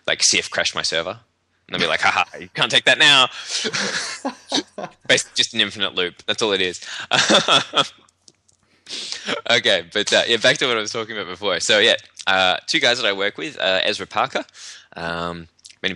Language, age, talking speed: English, 20-39, 190 wpm